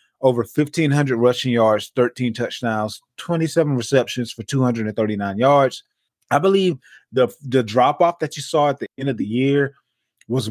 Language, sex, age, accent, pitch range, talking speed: English, male, 20-39, American, 110-130 Hz, 150 wpm